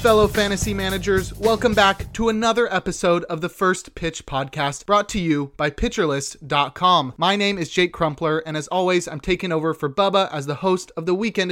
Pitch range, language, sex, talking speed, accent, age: 145-180 Hz, English, male, 195 wpm, American, 30-49